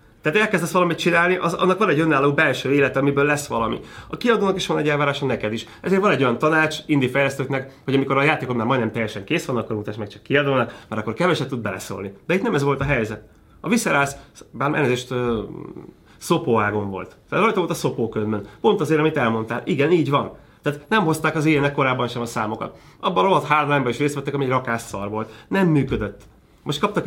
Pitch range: 115-155 Hz